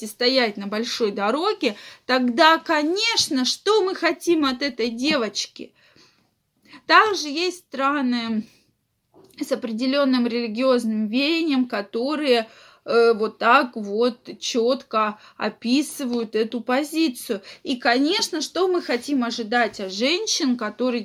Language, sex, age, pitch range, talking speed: Russian, female, 20-39, 240-330 Hz, 110 wpm